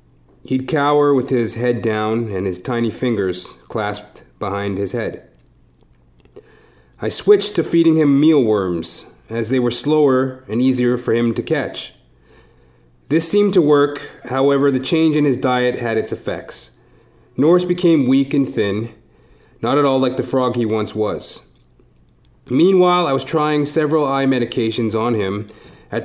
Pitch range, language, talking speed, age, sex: 115-150 Hz, English, 155 wpm, 30-49, male